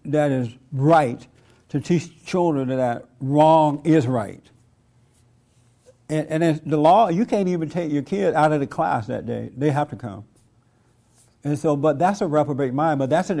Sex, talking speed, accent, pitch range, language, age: male, 180 wpm, American, 125-165 Hz, English, 60-79